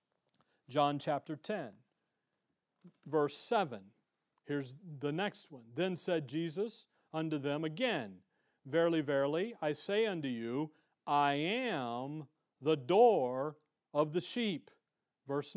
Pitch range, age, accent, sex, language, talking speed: 155-210 Hz, 50-69, American, male, English, 110 wpm